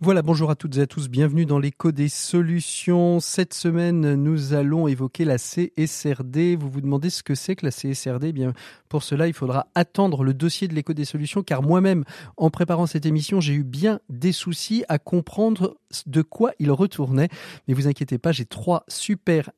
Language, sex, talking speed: French, male, 200 wpm